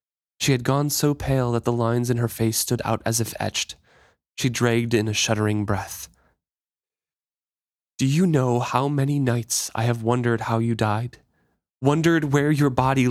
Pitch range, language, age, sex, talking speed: 110-135 Hz, English, 20-39, male, 175 wpm